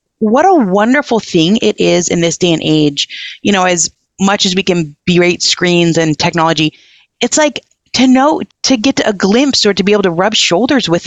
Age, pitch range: 30-49, 185-265 Hz